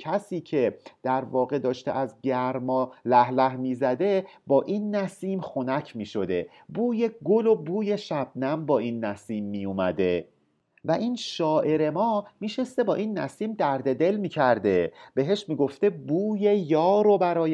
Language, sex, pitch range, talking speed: Persian, male, 130-195 Hz, 145 wpm